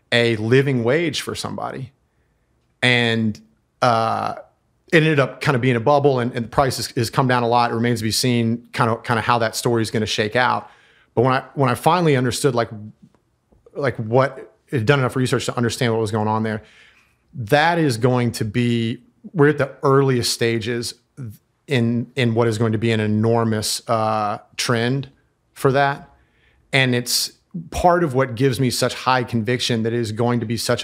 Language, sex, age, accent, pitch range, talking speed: English, male, 30-49, American, 110-130 Hz, 200 wpm